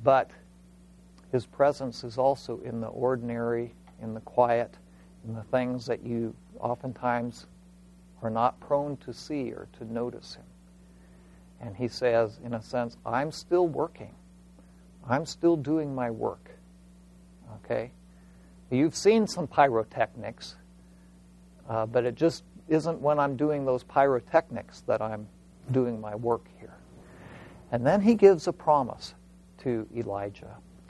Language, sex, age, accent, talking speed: English, male, 60-79, American, 135 wpm